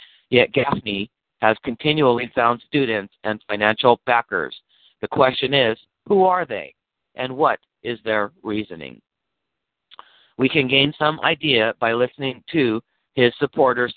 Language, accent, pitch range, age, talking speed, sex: English, American, 110-135 Hz, 50-69, 130 wpm, male